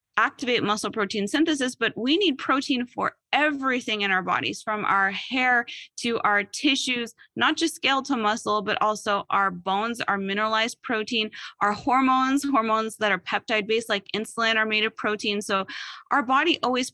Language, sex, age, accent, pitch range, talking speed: English, female, 20-39, American, 205-245 Hz, 170 wpm